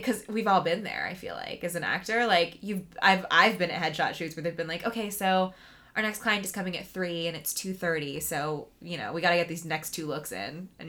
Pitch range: 160-215 Hz